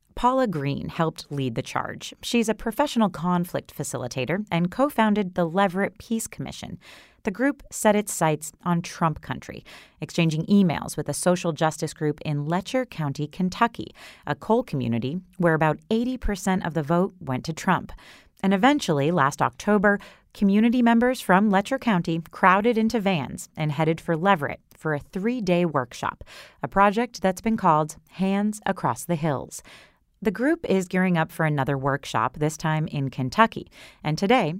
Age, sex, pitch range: 30-49, female, 155-205 Hz